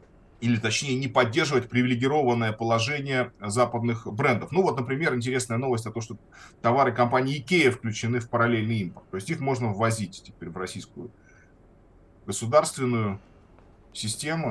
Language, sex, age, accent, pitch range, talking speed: Russian, male, 20-39, native, 110-135 Hz, 135 wpm